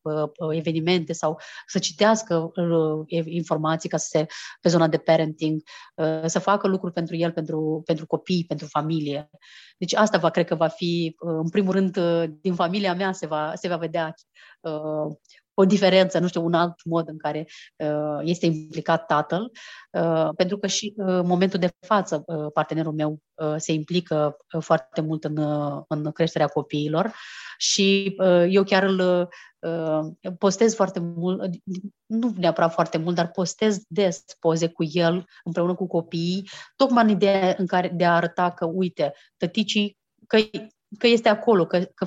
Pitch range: 160-185 Hz